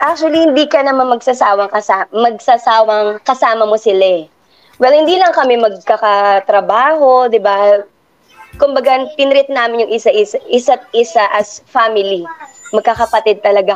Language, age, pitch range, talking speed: Filipino, 20-39, 210-265 Hz, 120 wpm